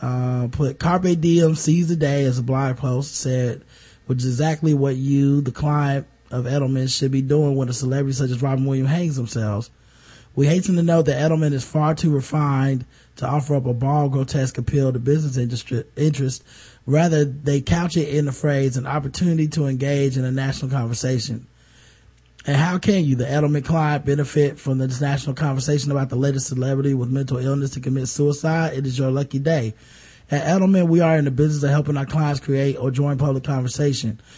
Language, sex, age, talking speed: English, male, 20-39, 195 wpm